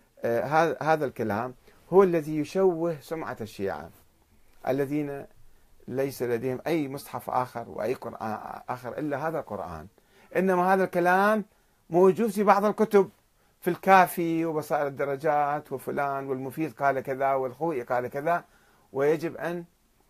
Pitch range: 125-175 Hz